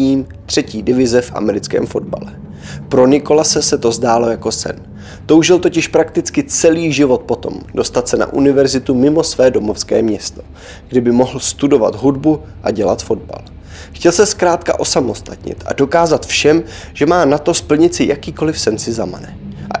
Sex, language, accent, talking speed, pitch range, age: male, Czech, native, 160 wpm, 110-150 Hz, 20-39